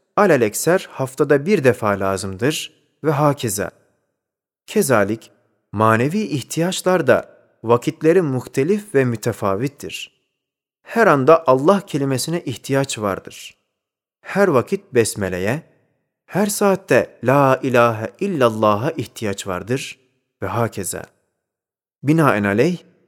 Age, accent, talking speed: 40-59, native, 90 wpm